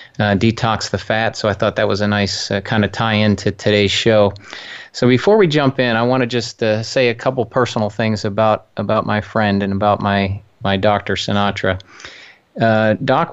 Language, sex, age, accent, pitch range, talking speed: English, male, 30-49, American, 100-115 Hz, 205 wpm